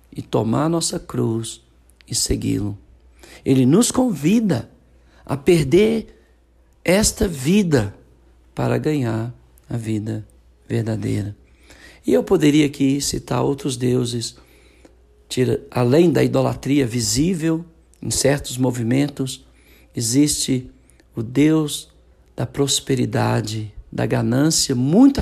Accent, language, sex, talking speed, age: Brazilian, Portuguese, male, 100 wpm, 60-79